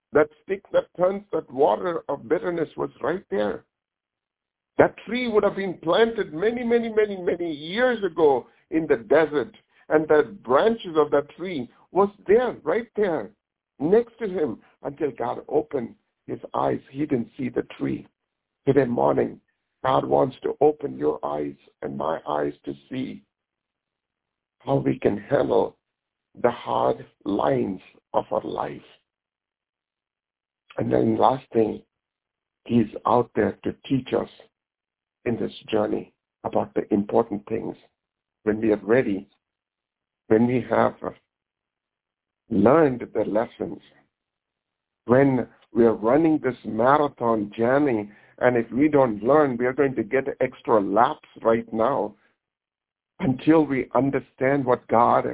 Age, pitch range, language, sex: 60-79, 115-190 Hz, English, male